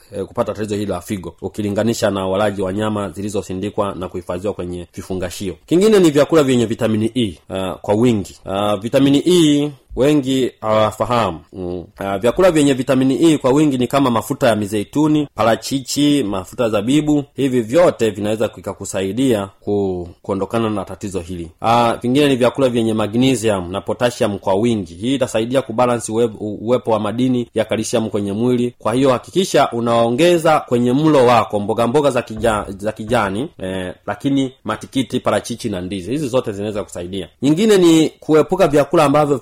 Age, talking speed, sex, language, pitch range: 30-49, 155 wpm, male, Swahili, 105-140 Hz